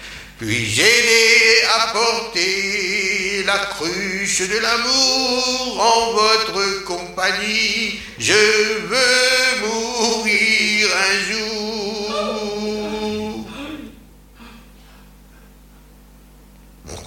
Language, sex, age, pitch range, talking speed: French, male, 60-79, 140-220 Hz, 55 wpm